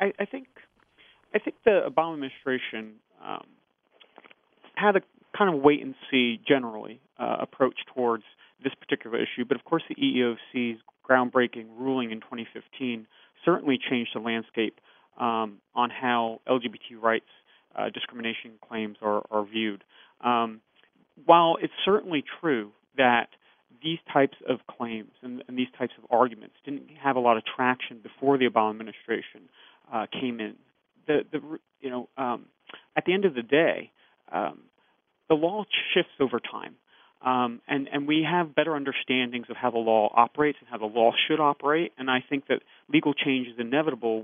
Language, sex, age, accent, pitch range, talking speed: English, male, 30-49, American, 115-145 Hz, 160 wpm